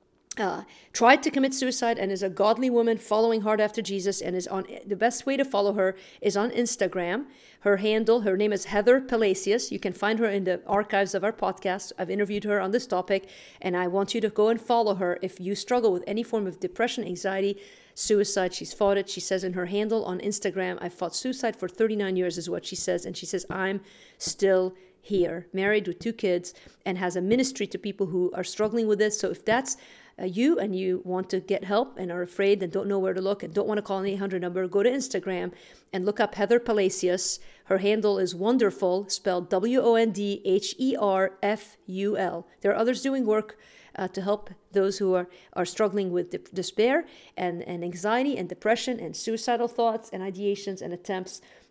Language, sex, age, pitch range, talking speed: English, female, 40-59, 185-220 Hz, 205 wpm